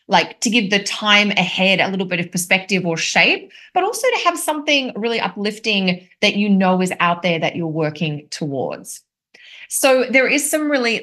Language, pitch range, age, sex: English, 170-220 Hz, 20-39, female